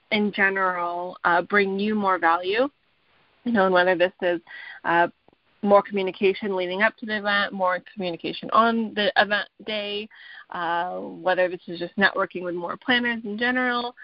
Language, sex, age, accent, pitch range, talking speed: English, female, 20-39, American, 180-220 Hz, 160 wpm